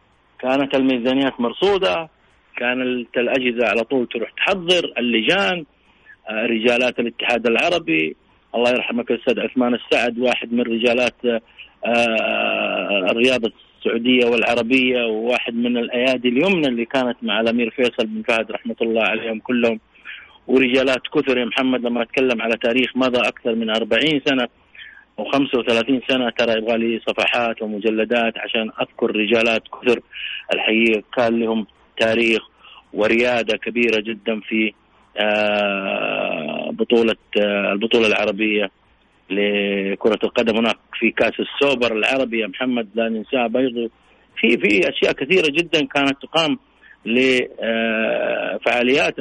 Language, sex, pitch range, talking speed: Arabic, male, 110-125 Hz, 115 wpm